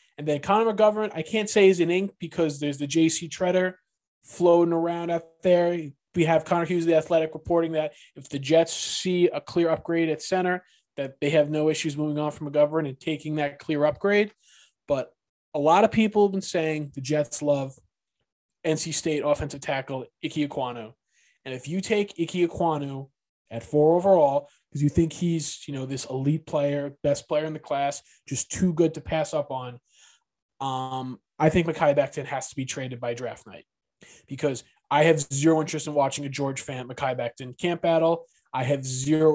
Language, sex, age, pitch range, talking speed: English, male, 20-39, 135-165 Hz, 190 wpm